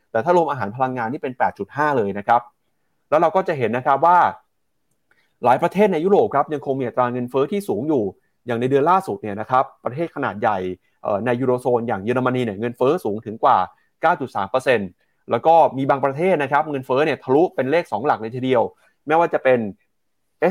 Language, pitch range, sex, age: Thai, 115-140 Hz, male, 20-39